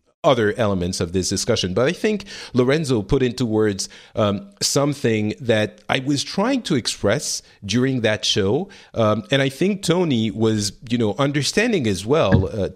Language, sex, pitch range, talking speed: English, male, 100-130 Hz, 165 wpm